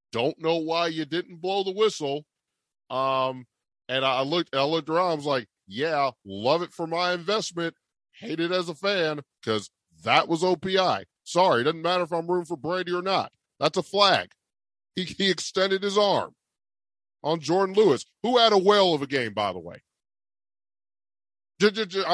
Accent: American